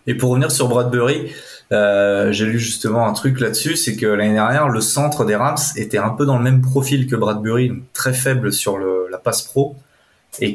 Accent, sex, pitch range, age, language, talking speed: French, male, 105-135 Hz, 20-39, French, 215 wpm